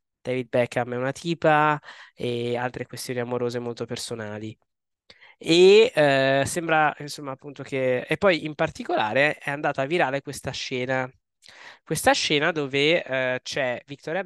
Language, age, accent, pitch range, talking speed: Italian, 20-39, native, 120-150 Hz, 140 wpm